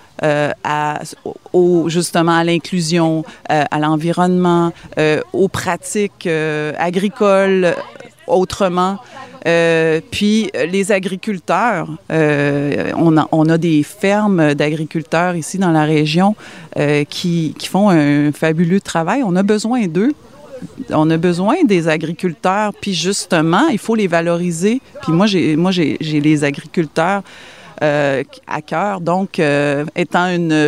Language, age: French, 30-49